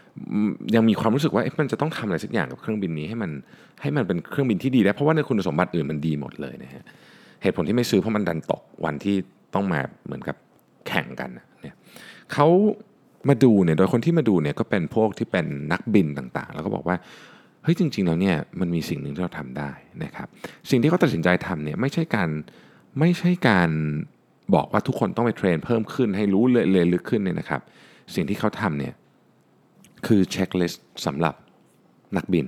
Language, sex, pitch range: Thai, male, 85-120 Hz